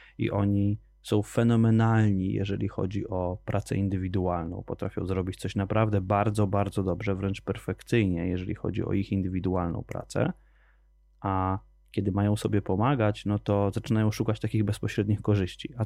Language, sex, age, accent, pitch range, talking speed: Polish, male, 20-39, native, 100-115 Hz, 140 wpm